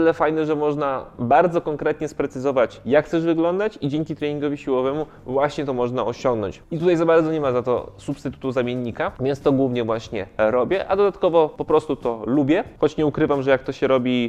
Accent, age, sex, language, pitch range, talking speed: native, 20-39, male, Polish, 125-160 Hz, 195 wpm